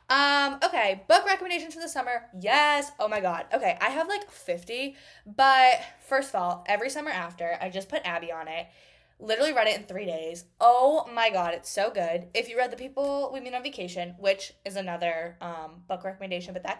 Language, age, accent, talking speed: English, 10-29, American, 205 wpm